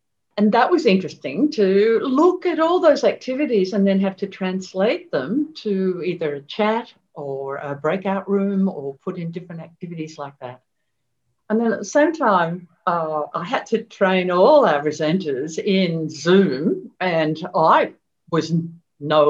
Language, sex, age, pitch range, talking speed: English, female, 60-79, 165-230 Hz, 160 wpm